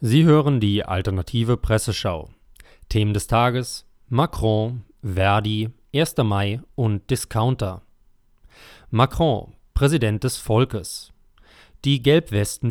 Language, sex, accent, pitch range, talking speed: German, male, German, 105-140 Hz, 95 wpm